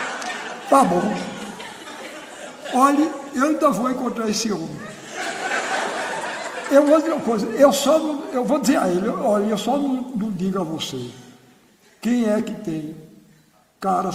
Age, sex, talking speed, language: 60-79, male, 155 wpm, Portuguese